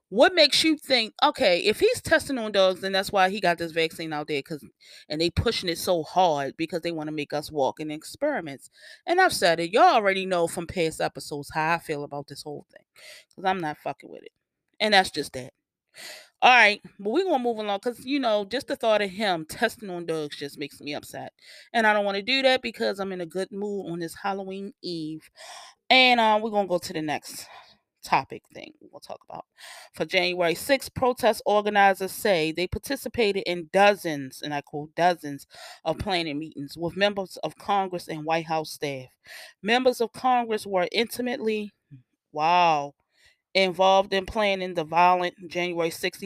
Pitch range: 165-220 Hz